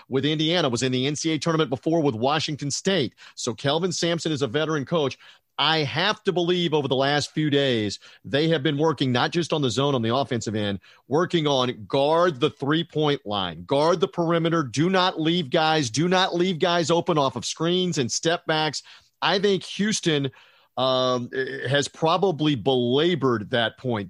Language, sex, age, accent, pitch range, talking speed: English, male, 40-59, American, 130-170 Hz, 180 wpm